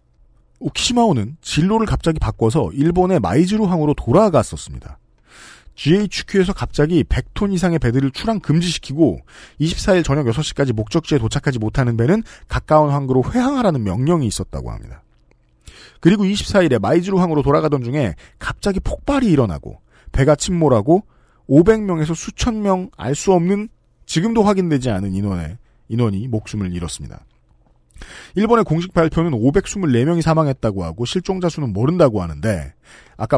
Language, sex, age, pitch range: Korean, male, 40-59, 115-185 Hz